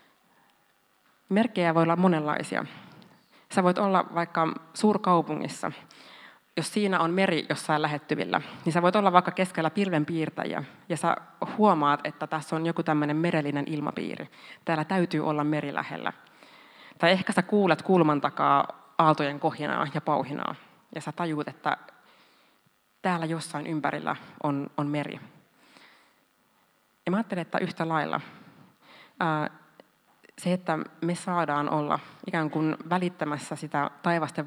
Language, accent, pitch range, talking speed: Finnish, native, 150-175 Hz, 125 wpm